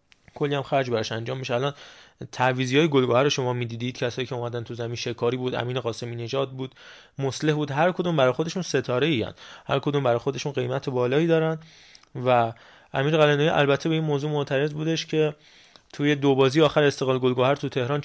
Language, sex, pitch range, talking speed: Persian, male, 125-150 Hz, 185 wpm